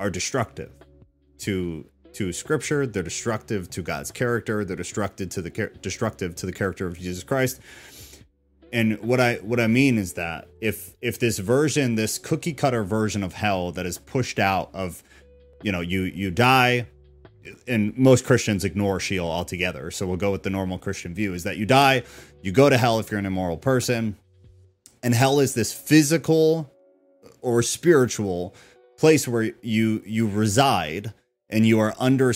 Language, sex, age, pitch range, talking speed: English, male, 30-49, 95-125 Hz, 170 wpm